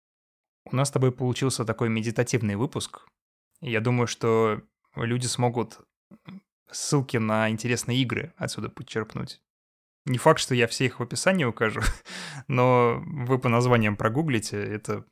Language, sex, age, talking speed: Russian, male, 20-39, 135 wpm